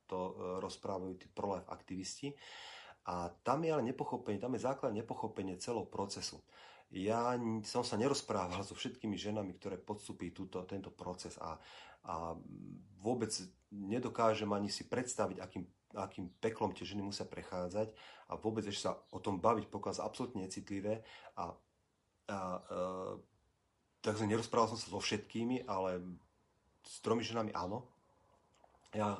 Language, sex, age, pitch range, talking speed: Slovak, male, 40-59, 95-110 Hz, 135 wpm